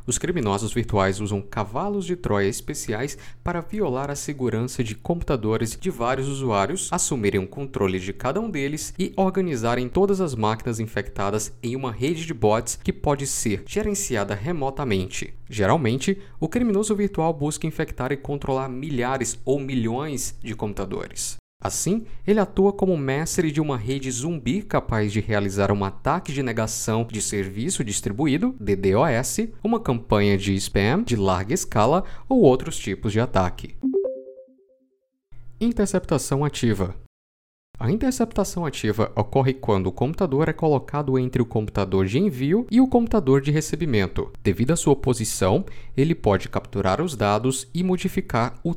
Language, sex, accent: Portuguese, male, Brazilian